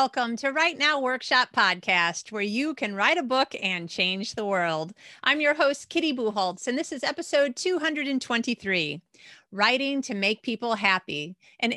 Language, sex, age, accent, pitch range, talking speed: English, female, 40-59, American, 205-275 Hz, 165 wpm